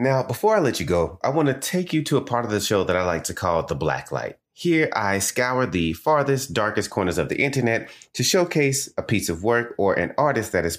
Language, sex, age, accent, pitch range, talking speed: English, male, 30-49, American, 85-125 Hz, 255 wpm